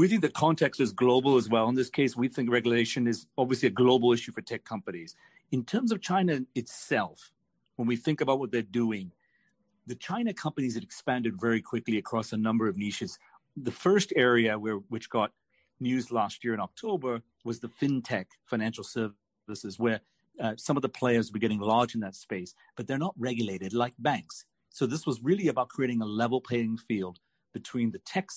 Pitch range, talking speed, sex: 110-135 Hz, 195 wpm, male